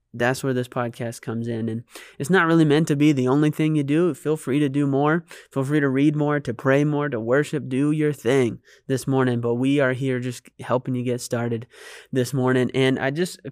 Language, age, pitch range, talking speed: English, 20-39, 125-145 Hz, 235 wpm